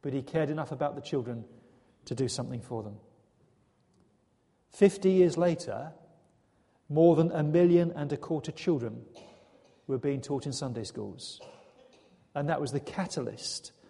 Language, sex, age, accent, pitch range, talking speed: English, male, 40-59, British, 125-185 Hz, 145 wpm